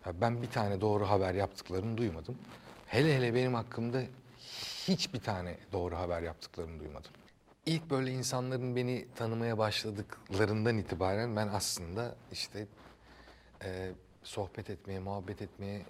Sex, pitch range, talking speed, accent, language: male, 90-115 Hz, 115 wpm, native, Turkish